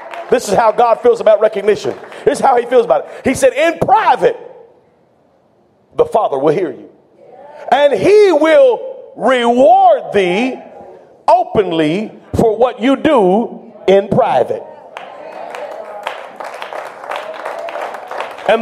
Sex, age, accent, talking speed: male, 40-59, American, 115 wpm